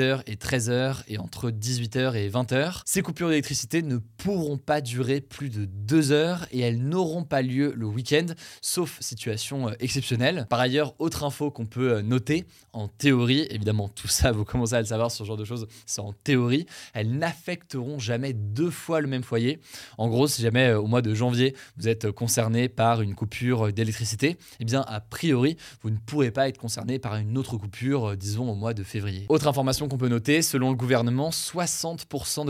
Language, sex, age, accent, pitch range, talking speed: French, male, 20-39, French, 115-140 Hz, 190 wpm